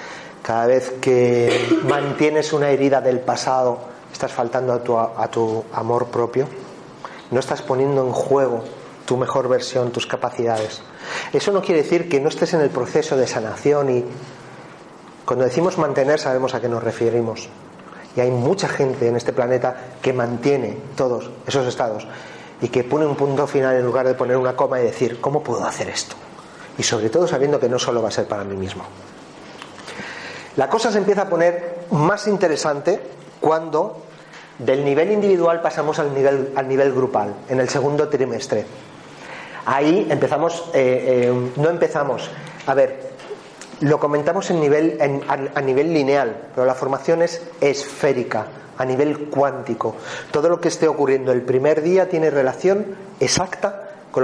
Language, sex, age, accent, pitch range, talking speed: Spanish, male, 40-59, Spanish, 125-160 Hz, 160 wpm